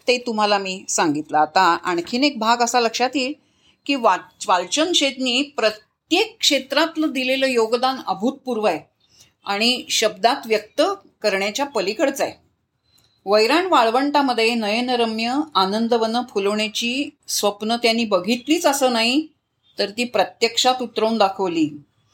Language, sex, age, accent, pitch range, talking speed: Marathi, female, 40-59, native, 185-260 Hz, 115 wpm